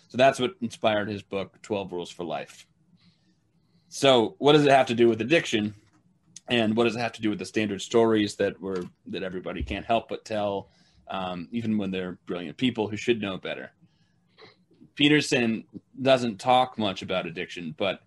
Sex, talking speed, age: male, 185 wpm, 30-49